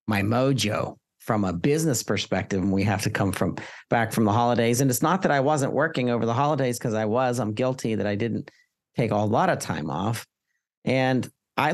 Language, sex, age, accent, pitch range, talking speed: English, male, 40-59, American, 110-130 Hz, 215 wpm